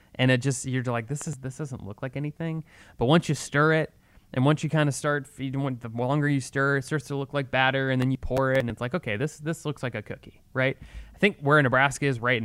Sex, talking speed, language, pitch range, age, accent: male, 270 wpm, English, 110-145 Hz, 20-39, American